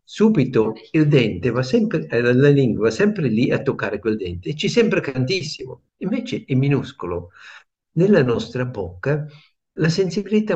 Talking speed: 150 wpm